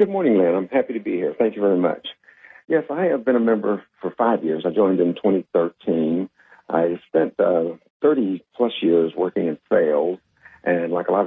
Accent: American